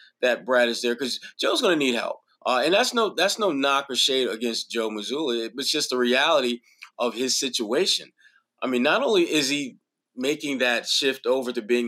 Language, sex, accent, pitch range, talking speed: English, male, American, 125-160 Hz, 205 wpm